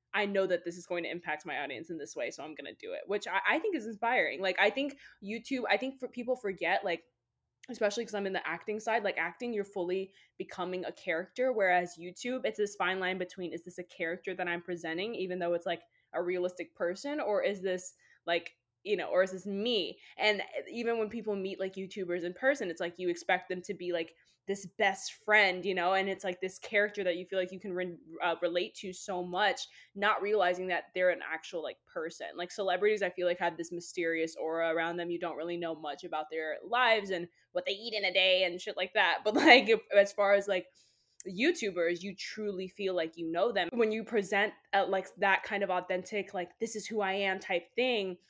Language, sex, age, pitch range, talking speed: English, female, 10-29, 175-205 Hz, 230 wpm